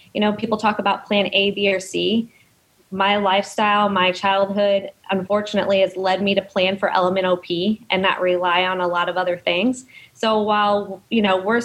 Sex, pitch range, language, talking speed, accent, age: female, 185-220 Hz, English, 195 wpm, American, 20-39